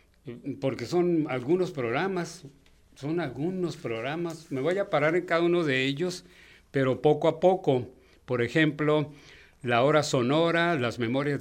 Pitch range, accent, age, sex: 120-160 Hz, Mexican, 60-79, male